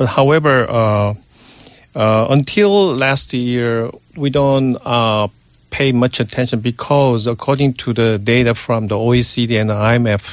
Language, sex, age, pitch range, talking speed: English, male, 50-69, 110-130 Hz, 130 wpm